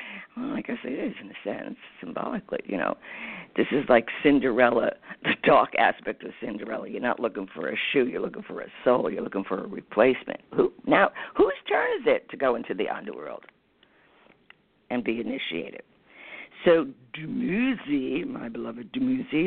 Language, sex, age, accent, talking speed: English, female, 50-69, American, 175 wpm